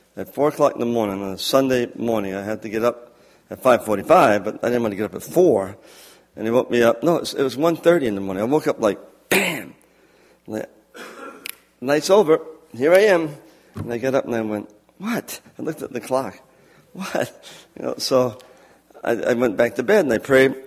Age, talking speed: 50-69, 225 wpm